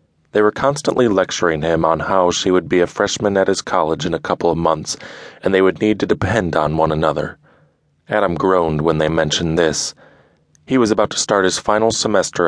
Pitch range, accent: 80-105 Hz, American